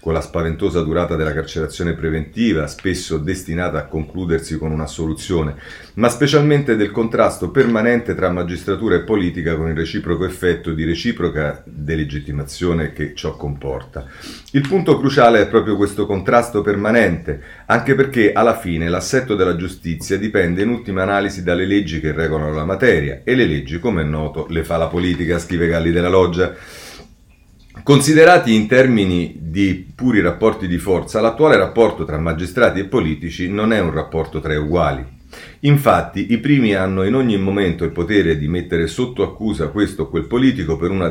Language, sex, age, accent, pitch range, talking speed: Italian, male, 40-59, native, 80-105 Hz, 160 wpm